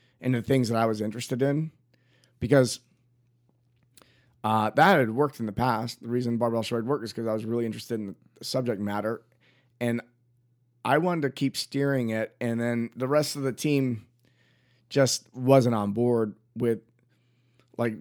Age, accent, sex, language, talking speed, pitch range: 30-49, American, male, English, 170 wpm, 115-130 Hz